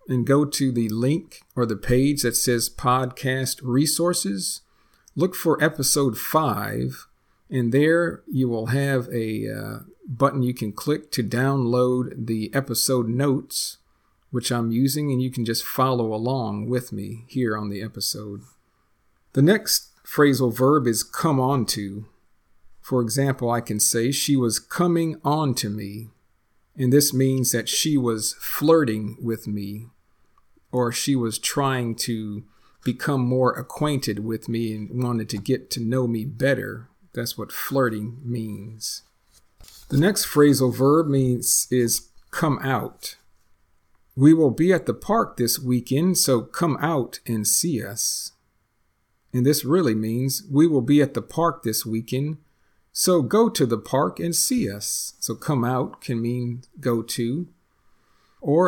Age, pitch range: 50-69, 115-140 Hz